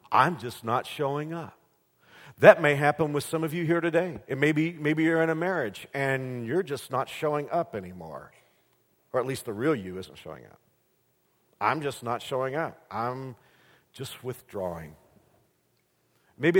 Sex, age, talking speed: male, 50-69, 170 wpm